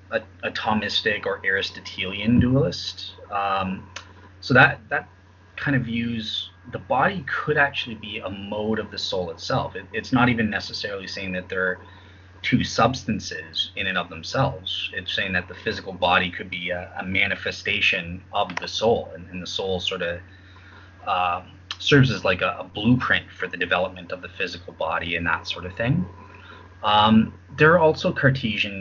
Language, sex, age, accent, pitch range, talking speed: English, male, 20-39, American, 90-110 Hz, 170 wpm